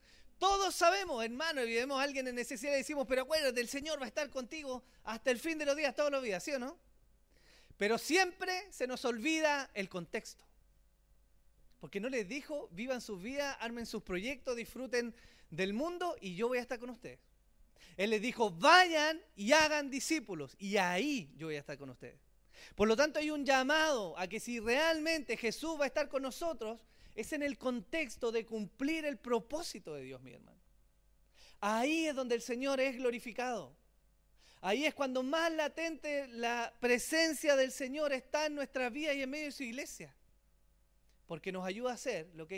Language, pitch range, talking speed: Spanish, 195-285 Hz, 190 wpm